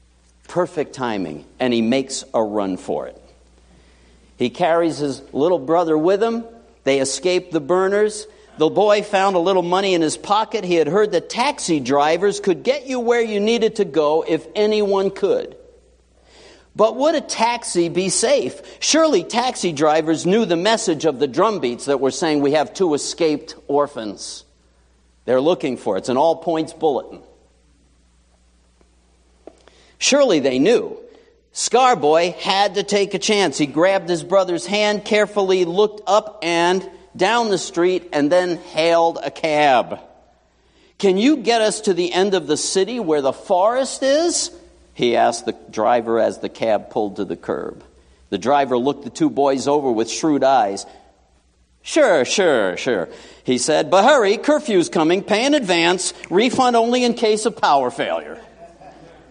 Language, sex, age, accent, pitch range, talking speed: English, male, 60-79, American, 140-210 Hz, 160 wpm